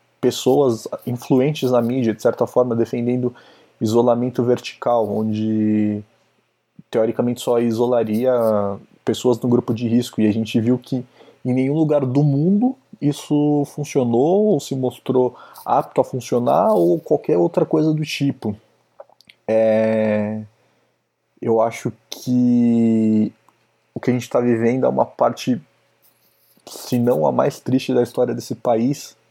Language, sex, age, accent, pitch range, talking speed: Portuguese, male, 20-39, Brazilian, 115-135 Hz, 130 wpm